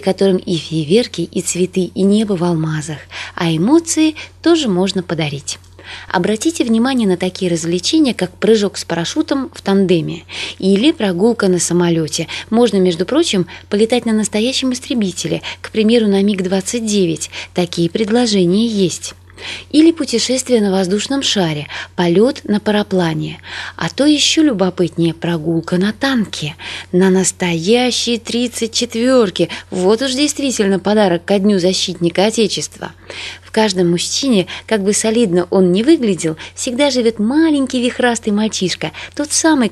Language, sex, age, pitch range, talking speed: Russian, female, 20-39, 175-235 Hz, 130 wpm